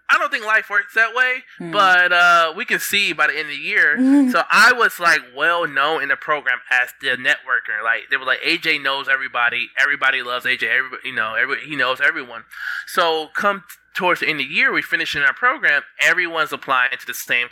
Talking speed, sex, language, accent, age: 225 wpm, male, English, American, 20-39